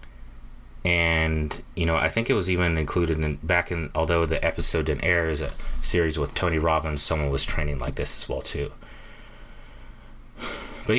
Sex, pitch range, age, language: male, 75-90 Hz, 30-49, English